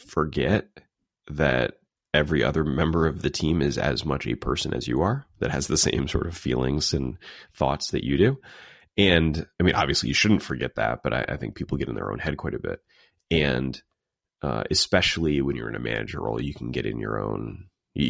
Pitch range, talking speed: 65-85 Hz, 215 wpm